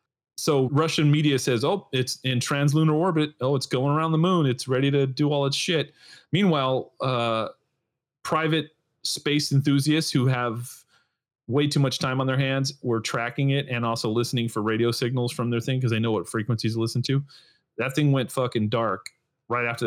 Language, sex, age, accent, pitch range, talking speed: English, male, 30-49, American, 125-160 Hz, 190 wpm